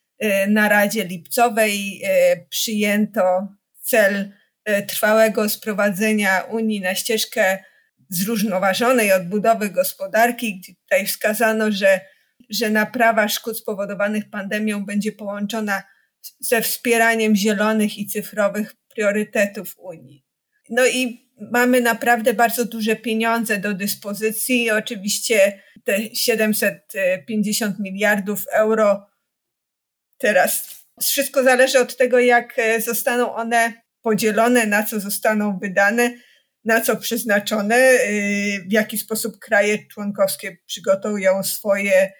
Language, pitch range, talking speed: Polish, 205-230 Hz, 95 wpm